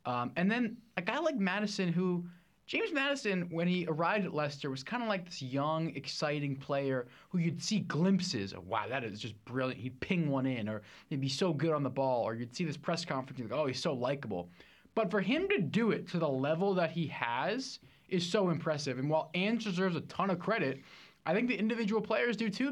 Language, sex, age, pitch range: English, male, 20-39, 135-190 Hz